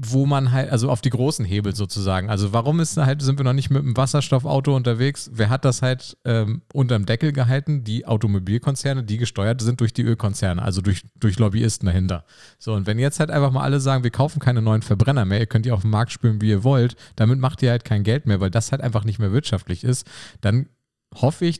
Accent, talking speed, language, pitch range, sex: German, 235 wpm, German, 110-135 Hz, male